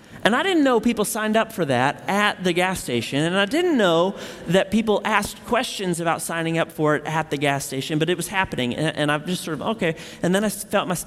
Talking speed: 250 wpm